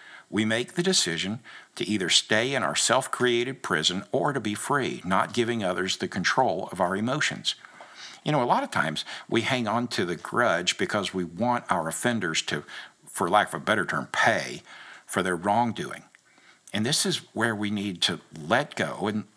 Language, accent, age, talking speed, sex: English, American, 60-79, 190 wpm, male